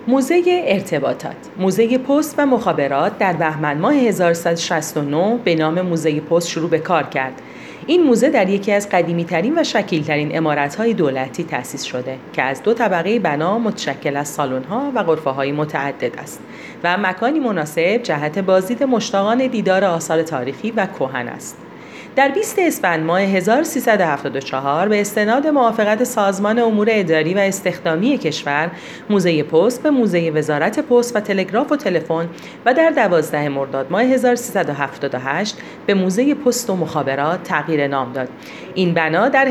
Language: Persian